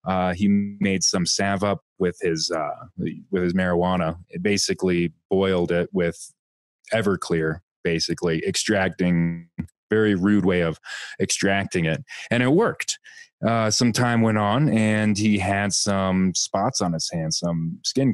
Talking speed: 145 wpm